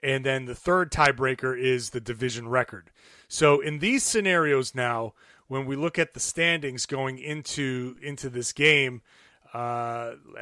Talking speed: 150 wpm